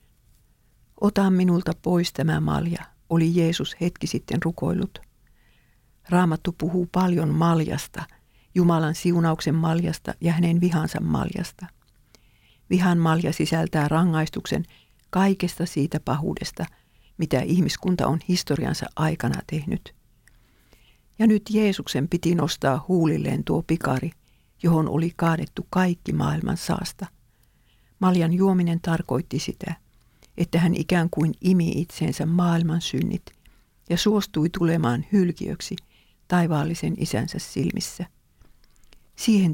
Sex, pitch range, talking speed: female, 150-180 Hz, 105 wpm